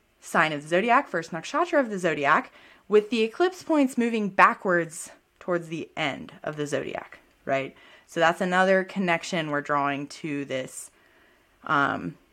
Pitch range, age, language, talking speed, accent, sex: 155-195 Hz, 20-39, English, 150 wpm, American, female